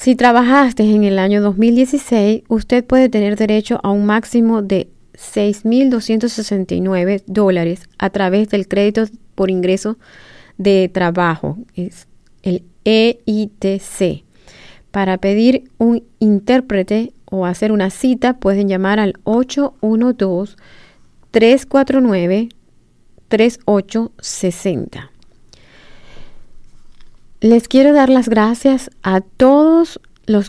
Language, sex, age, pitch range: English, female, 30-49, 190-235 Hz